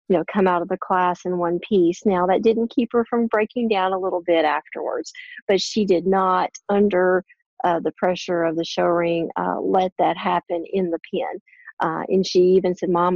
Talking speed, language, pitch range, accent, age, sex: 210 wpm, English, 175-205 Hz, American, 40-59, female